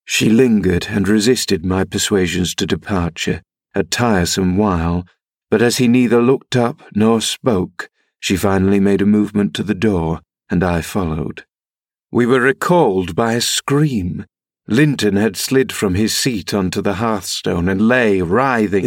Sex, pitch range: male, 95-120 Hz